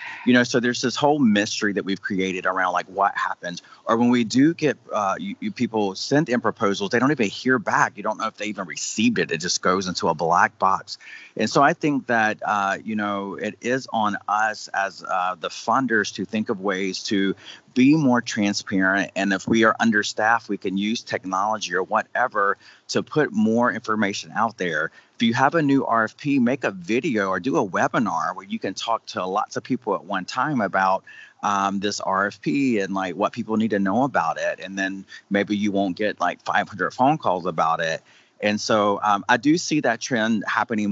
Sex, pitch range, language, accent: male, 95-115 Hz, English, American